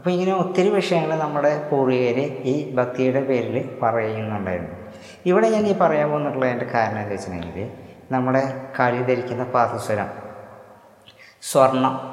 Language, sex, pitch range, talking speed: Malayalam, female, 115-135 Hz, 115 wpm